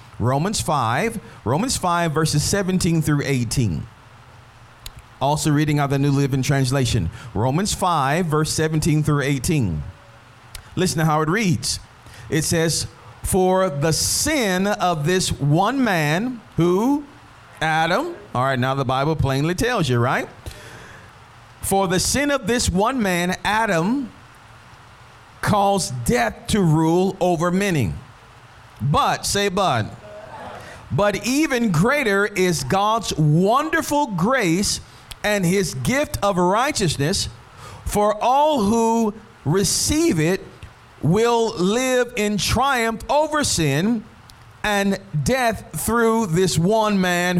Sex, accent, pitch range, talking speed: male, American, 135-215 Hz, 115 wpm